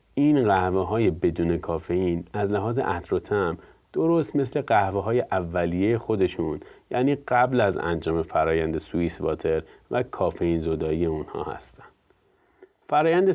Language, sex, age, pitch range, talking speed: Persian, male, 30-49, 95-125 Hz, 120 wpm